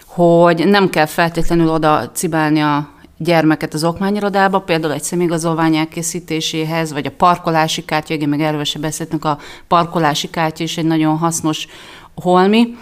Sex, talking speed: female, 135 wpm